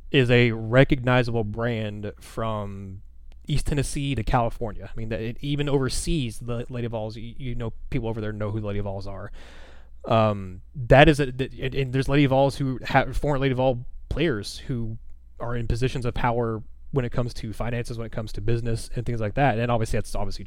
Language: English